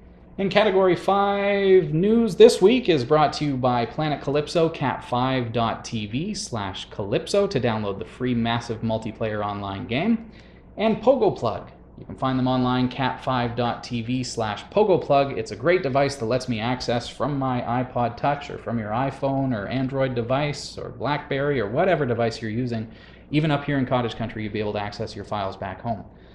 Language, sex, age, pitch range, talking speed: English, male, 30-49, 110-135 Hz, 175 wpm